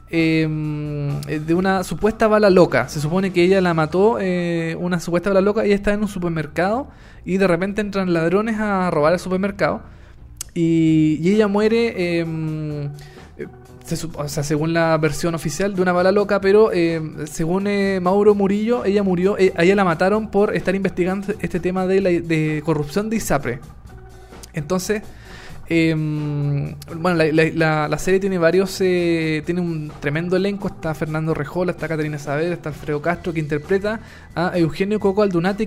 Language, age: Spanish, 20-39